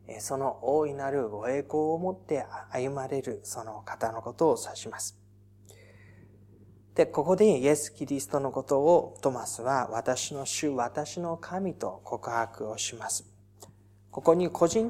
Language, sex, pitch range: Japanese, male, 110-170 Hz